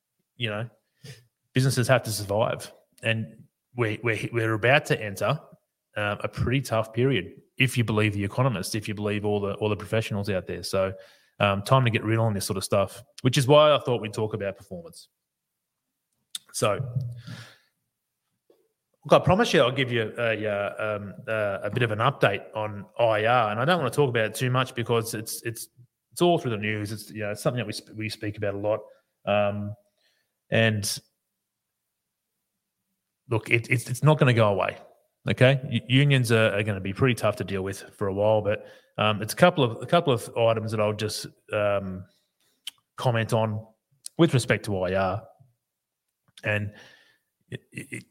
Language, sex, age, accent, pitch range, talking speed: English, male, 30-49, Australian, 105-130 Hz, 185 wpm